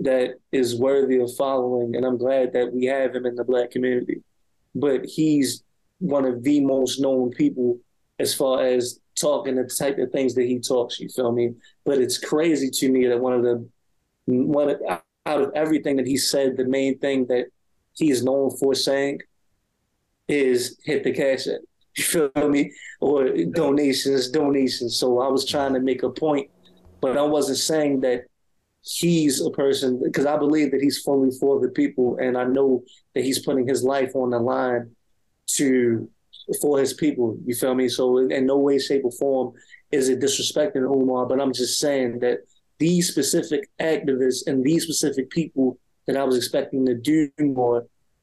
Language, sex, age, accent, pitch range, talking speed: English, male, 20-39, American, 125-145 Hz, 185 wpm